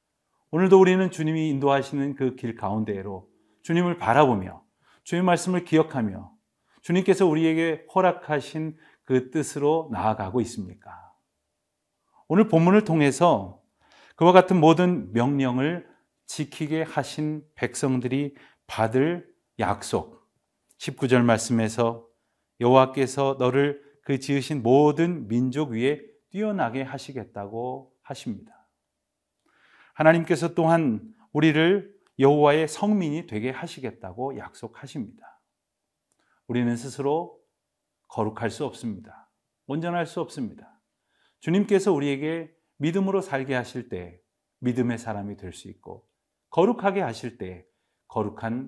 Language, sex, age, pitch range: Korean, male, 40-59, 120-160 Hz